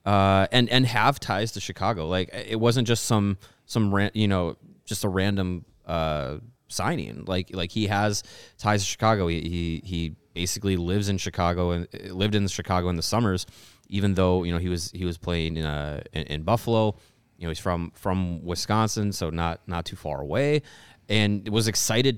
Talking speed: 190 wpm